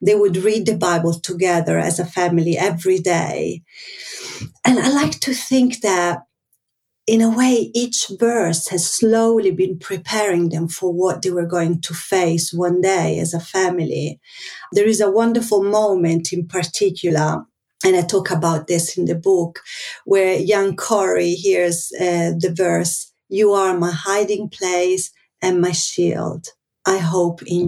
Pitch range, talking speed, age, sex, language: 170-210 Hz, 155 wpm, 40-59, female, English